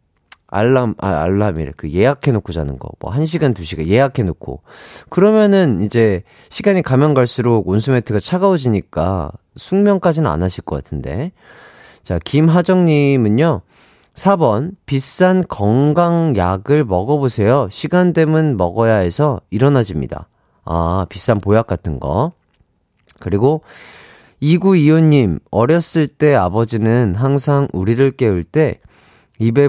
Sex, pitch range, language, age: male, 105-165 Hz, Korean, 30-49